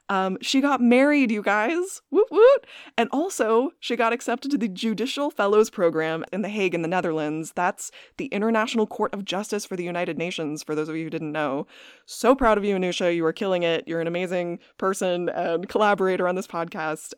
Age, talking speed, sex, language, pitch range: 20-39, 205 wpm, female, English, 165-215 Hz